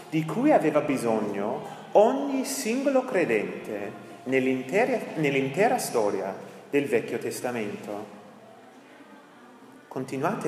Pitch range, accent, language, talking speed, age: 140-210 Hz, native, Italian, 80 wpm, 30-49